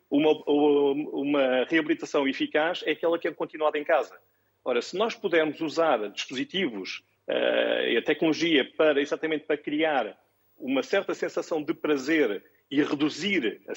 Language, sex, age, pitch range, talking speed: Portuguese, male, 40-59, 145-215 Hz, 135 wpm